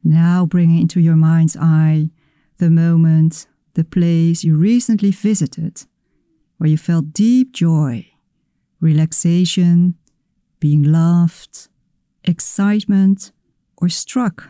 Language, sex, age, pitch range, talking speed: Dutch, female, 50-69, 160-180 Hz, 100 wpm